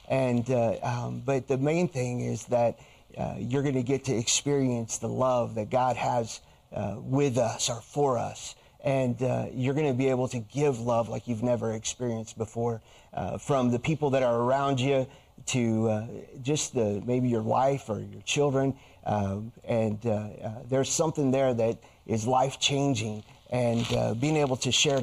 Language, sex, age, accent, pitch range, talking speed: English, male, 30-49, American, 115-140 Hz, 185 wpm